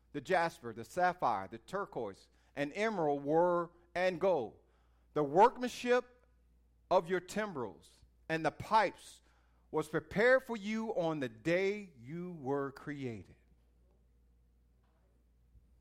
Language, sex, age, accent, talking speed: English, male, 50-69, American, 110 wpm